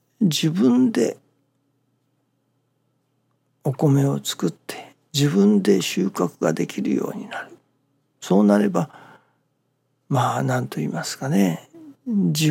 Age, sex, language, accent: 60-79, male, Japanese, native